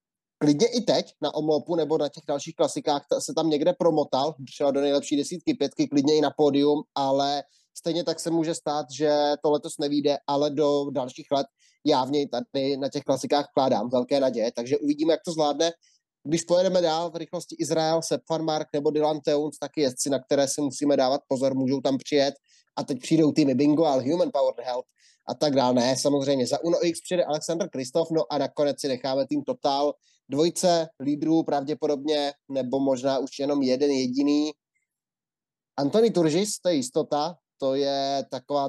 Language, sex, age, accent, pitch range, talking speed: Czech, male, 20-39, native, 140-160 Hz, 180 wpm